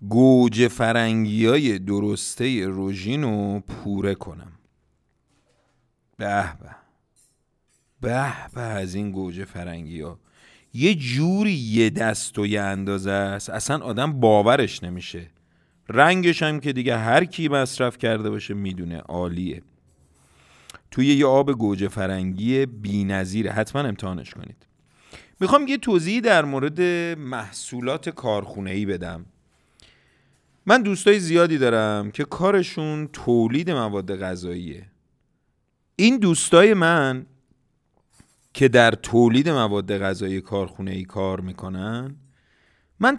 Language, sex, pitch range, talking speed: Persian, male, 95-135 Hz, 105 wpm